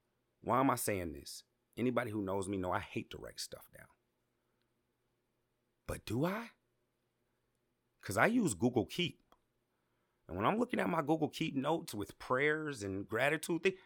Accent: American